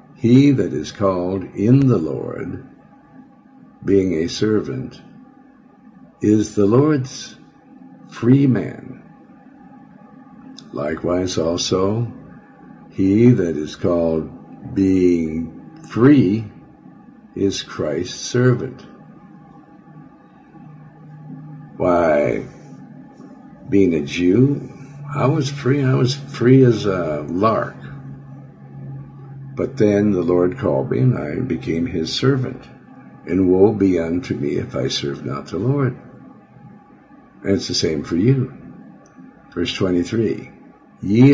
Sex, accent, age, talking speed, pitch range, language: male, American, 60-79, 100 wpm, 90-135 Hz, English